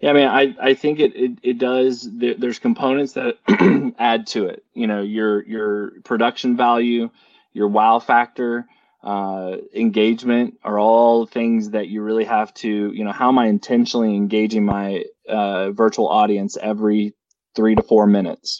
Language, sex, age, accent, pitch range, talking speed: English, male, 20-39, American, 110-125 Hz, 165 wpm